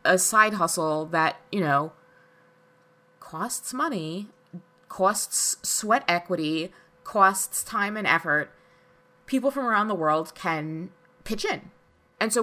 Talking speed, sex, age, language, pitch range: 120 wpm, female, 20-39, English, 165-195 Hz